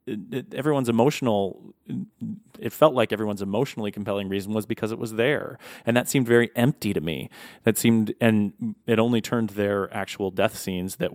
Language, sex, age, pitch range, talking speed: English, male, 30-49, 95-115 Hz, 185 wpm